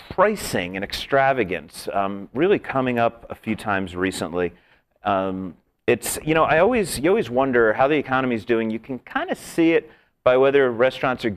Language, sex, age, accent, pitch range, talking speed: English, male, 40-59, American, 95-130 Hz, 185 wpm